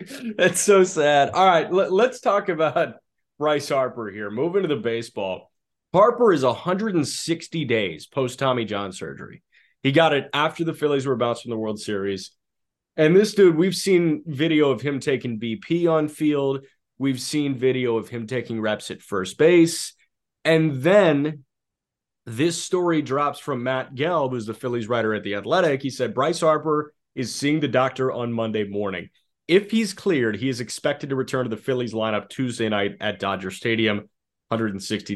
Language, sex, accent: English, male, American